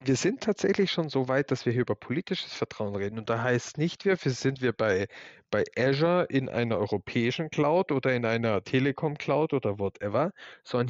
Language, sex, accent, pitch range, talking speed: German, male, German, 120-155 Hz, 185 wpm